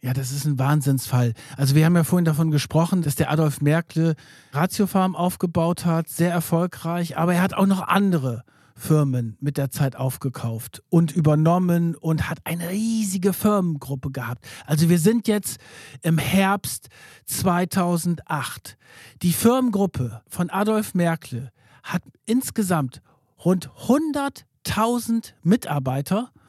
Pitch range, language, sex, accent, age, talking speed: 145-205 Hz, German, male, German, 50-69, 130 wpm